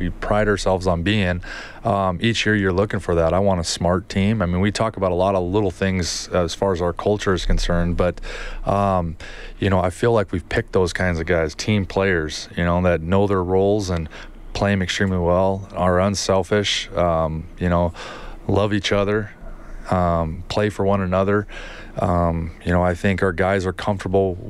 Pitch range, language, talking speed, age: 85-100 Hz, English, 200 wpm, 30-49